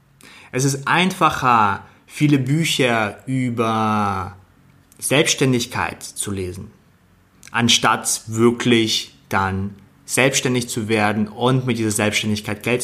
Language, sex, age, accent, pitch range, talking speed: German, male, 30-49, German, 105-145 Hz, 95 wpm